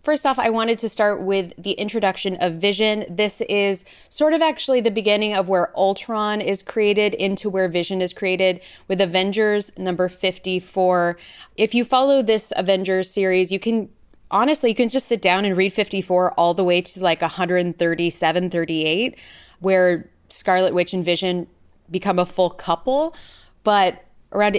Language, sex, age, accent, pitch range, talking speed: English, female, 20-39, American, 180-215 Hz, 165 wpm